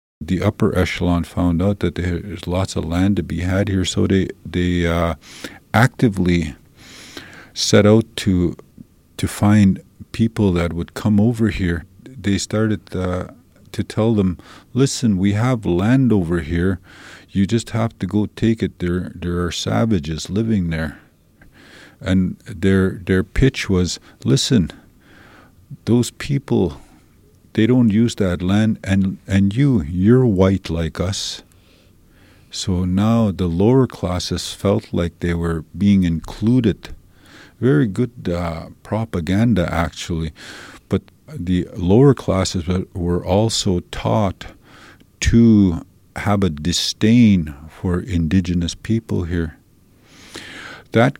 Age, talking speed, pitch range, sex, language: 50-69, 125 wpm, 85-110 Hz, male, English